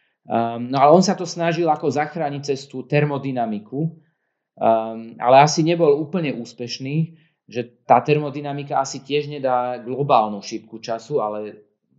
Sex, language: male, Slovak